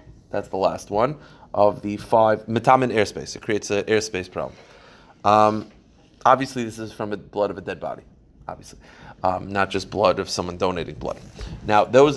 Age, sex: 30-49, male